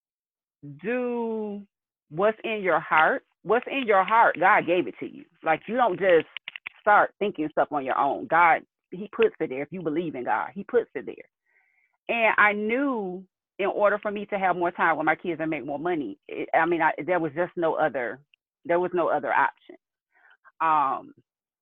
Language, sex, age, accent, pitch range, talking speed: English, female, 30-49, American, 165-215 Hz, 195 wpm